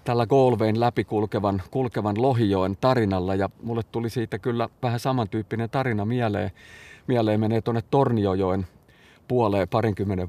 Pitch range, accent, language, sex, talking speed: 105-135 Hz, native, Finnish, male, 130 wpm